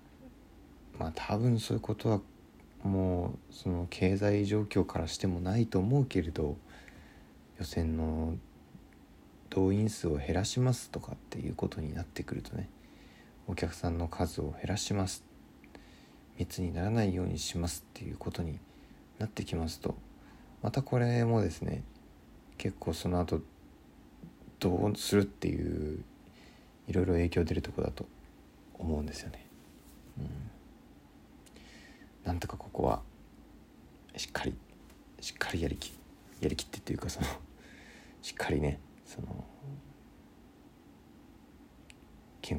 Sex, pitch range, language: male, 80-100 Hz, Japanese